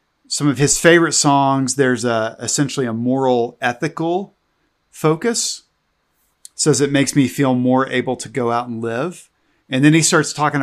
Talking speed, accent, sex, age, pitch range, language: 150 wpm, American, male, 40-59, 125-160 Hz, English